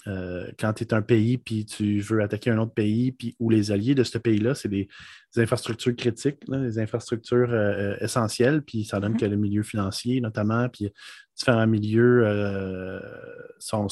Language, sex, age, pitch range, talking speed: French, male, 20-39, 110-130 Hz, 180 wpm